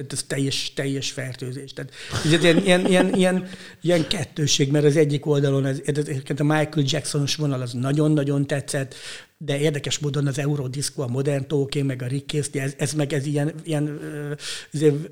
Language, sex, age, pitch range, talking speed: Hungarian, male, 60-79, 135-155 Hz, 170 wpm